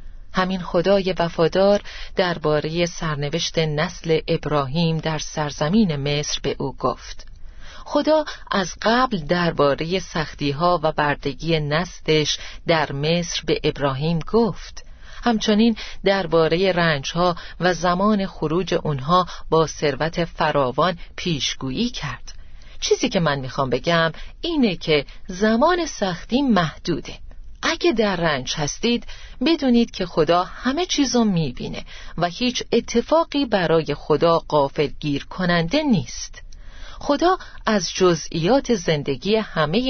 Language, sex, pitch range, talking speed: Persian, female, 150-215 Hz, 105 wpm